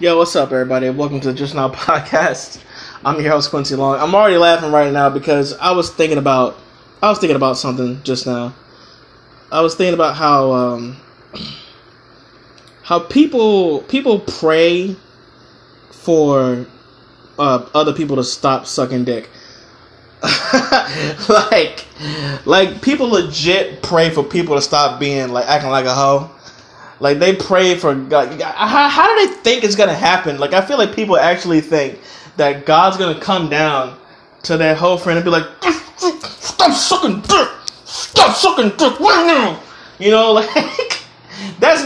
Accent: American